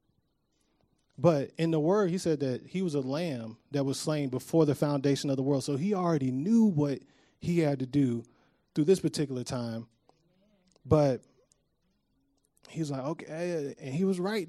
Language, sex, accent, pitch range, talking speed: English, male, American, 135-175 Hz, 175 wpm